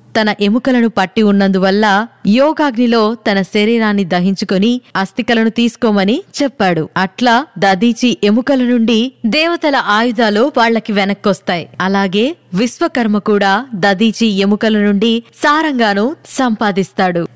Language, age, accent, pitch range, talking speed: Telugu, 20-39, native, 205-260 Hz, 95 wpm